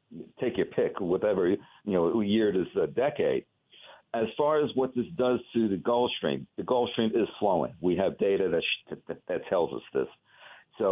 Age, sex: 60-79, male